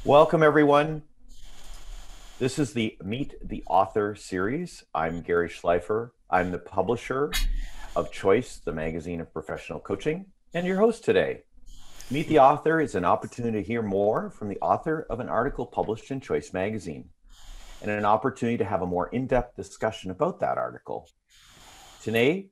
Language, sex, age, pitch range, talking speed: English, male, 40-59, 95-130 Hz, 155 wpm